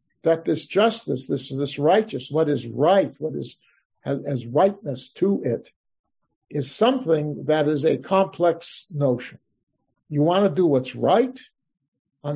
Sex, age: male, 50-69